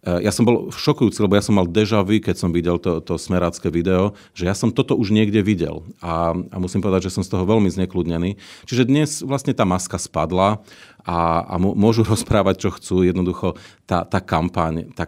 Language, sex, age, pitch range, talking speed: Slovak, male, 40-59, 85-105 Hz, 190 wpm